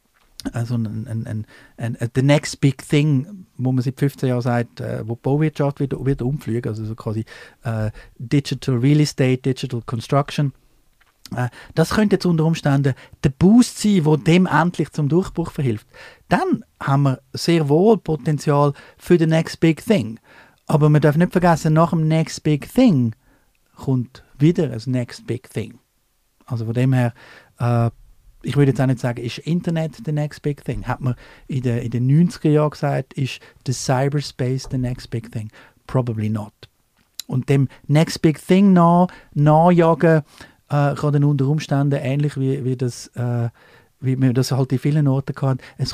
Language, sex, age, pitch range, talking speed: German, male, 50-69, 125-155 Hz, 170 wpm